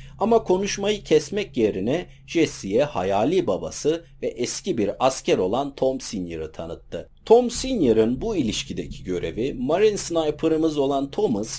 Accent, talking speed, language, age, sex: native, 125 wpm, Turkish, 50-69, male